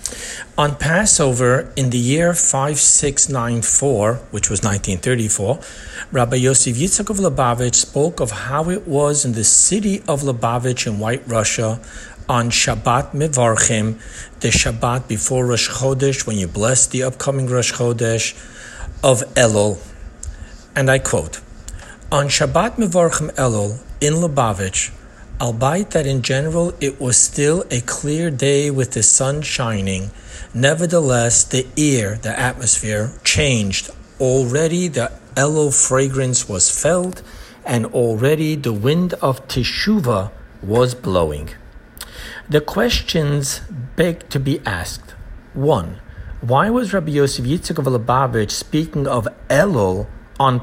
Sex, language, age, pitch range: male, English, 60-79, 110-145 Hz